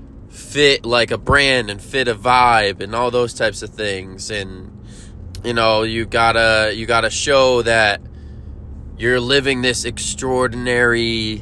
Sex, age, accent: male, 20-39, American